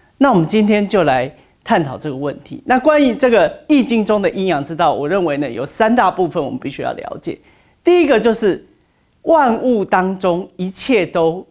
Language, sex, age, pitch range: Chinese, male, 40-59, 160-230 Hz